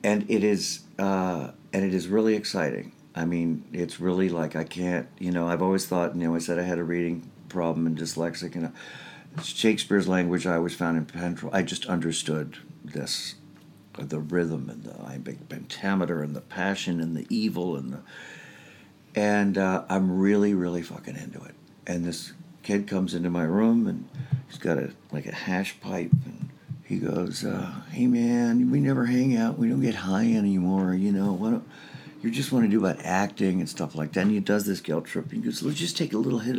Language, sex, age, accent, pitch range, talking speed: English, male, 60-79, American, 85-145 Hz, 205 wpm